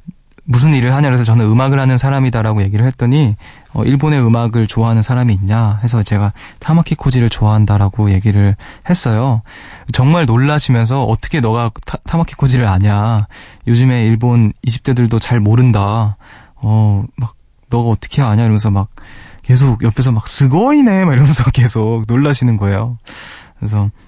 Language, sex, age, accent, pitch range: Korean, male, 20-39, native, 105-135 Hz